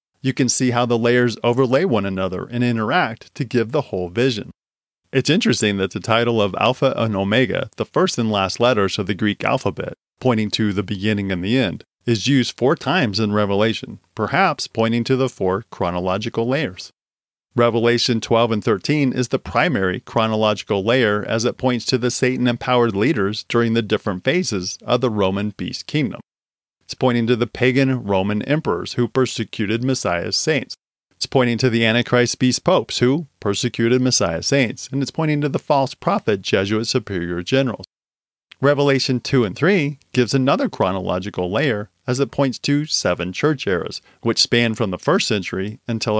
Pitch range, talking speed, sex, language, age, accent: 105-130 Hz, 175 wpm, male, English, 40-59, American